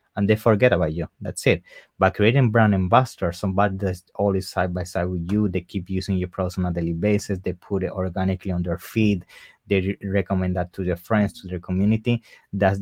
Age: 20-39